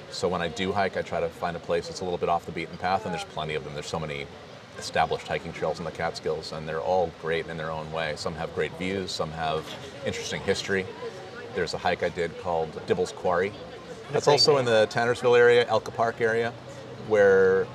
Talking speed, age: 225 wpm, 30-49